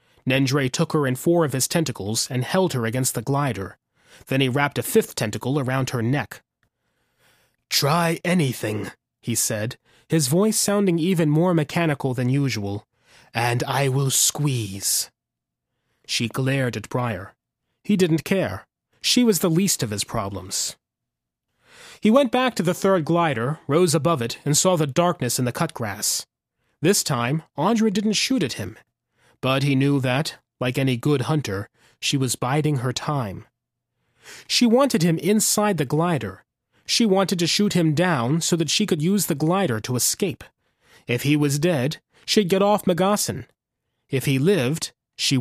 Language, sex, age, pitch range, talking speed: English, male, 30-49, 125-180 Hz, 165 wpm